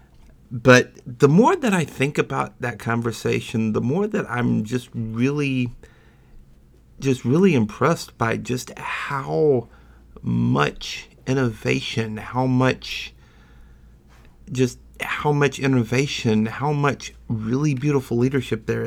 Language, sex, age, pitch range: English, male, 50-69, 110-140 Hz